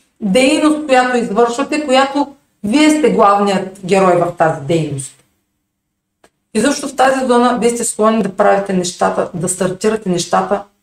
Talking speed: 140 wpm